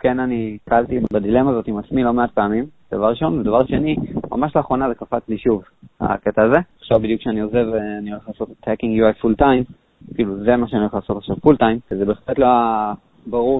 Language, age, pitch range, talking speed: Hebrew, 20-39, 110-135 Hz, 200 wpm